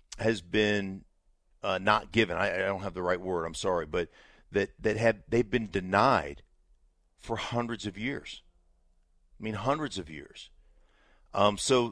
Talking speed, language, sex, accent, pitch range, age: 160 wpm, English, male, American, 85-105 Hz, 50-69